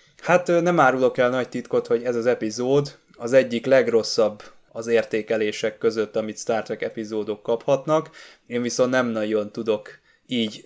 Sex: male